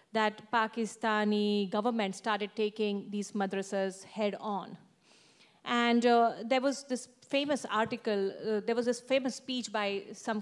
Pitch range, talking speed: 205-235 Hz, 140 wpm